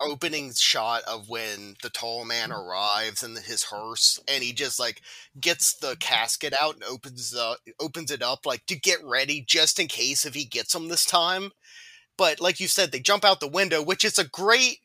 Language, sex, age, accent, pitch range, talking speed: English, male, 30-49, American, 125-185 Hz, 205 wpm